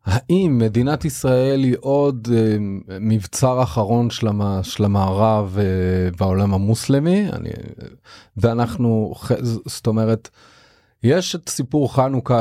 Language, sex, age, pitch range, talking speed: Hebrew, male, 30-49, 100-125 Hz, 120 wpm